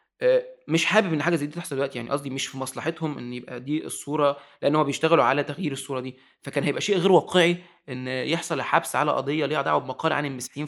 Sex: male